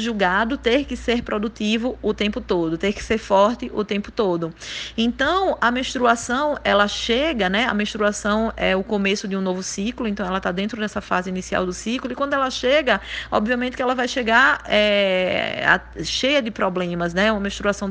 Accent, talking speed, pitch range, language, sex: Brazilian, 190 wpm, 180-230 Hz, Portuguese, female